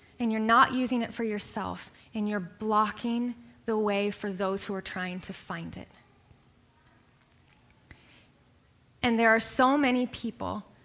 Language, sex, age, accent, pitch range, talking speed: English, female, 20-39, American, 205-255 Hz, 145 wpm